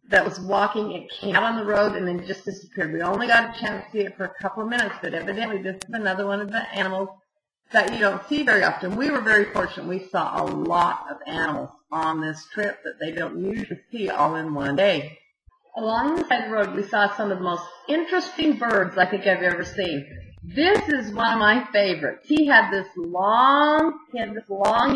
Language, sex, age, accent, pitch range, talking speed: English, female, 50-69, American, 190-235 Hz, 230 wpm